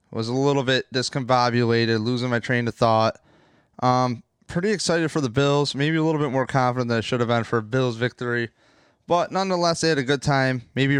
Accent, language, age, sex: American, English, 20-39, male